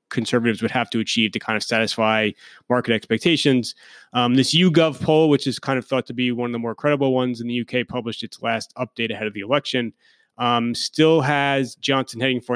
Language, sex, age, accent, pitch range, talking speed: English, male, 30-49, American, 115-135 Hz, 215 wpm